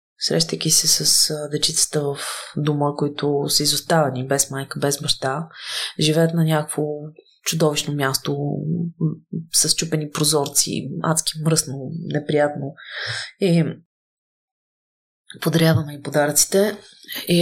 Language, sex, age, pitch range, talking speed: Bulgarian, female, 20-39, 155-195 Hz, 95 wpm